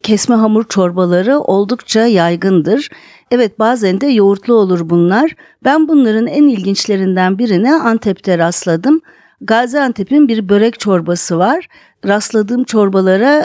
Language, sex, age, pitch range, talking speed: Turkish, female, 50-69, 200-265 Hz, 110 wpm